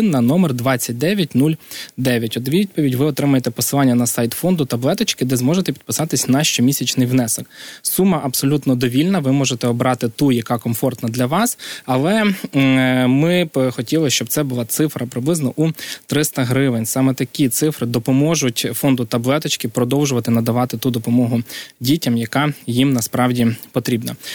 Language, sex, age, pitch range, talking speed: Ukrainian, male, 20-39, 120-140 Hz, 140 wpm